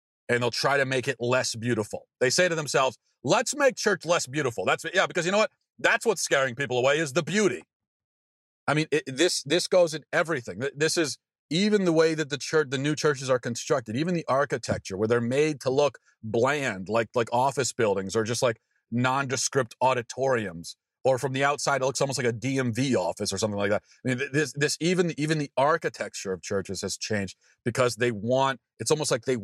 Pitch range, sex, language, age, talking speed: 115-145 Hz, male, English, 40-59, 210 wpm